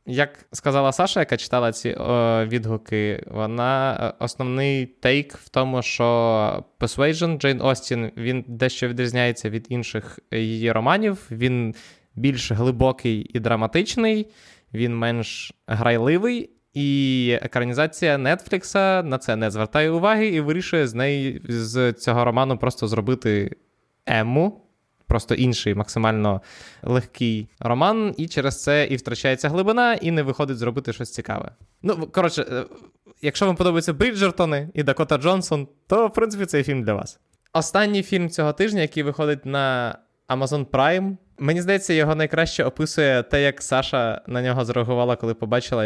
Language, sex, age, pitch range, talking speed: Ukrainian, male, 20-39, 120-155 Hz, 135 wpm